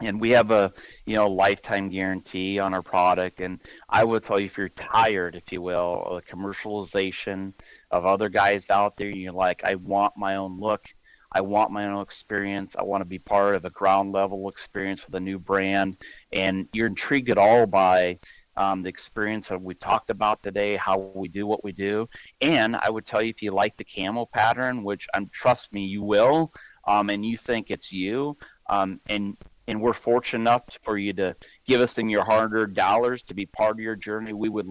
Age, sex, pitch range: 30-49, male, 95-110 Hz